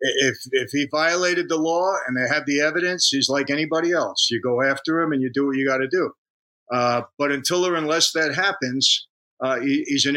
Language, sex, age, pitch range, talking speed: English, male, 50-69, 140-185 Hz, 225 wpm